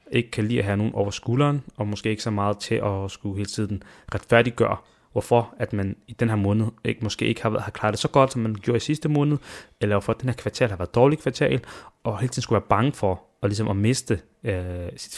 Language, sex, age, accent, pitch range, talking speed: Danish, male, 20-39, native, 100-120 Hz, 255 wpm